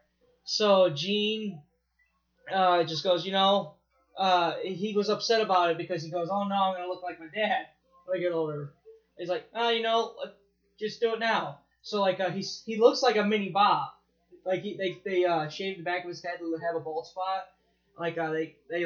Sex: male